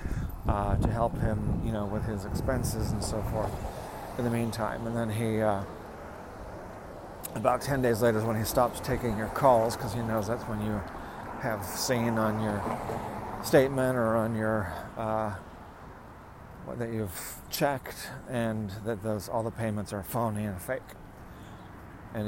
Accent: American